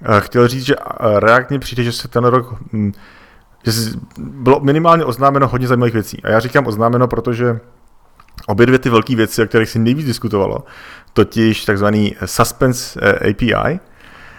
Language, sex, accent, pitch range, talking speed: Czech, male, native, 100-120 Hz, 155 wpm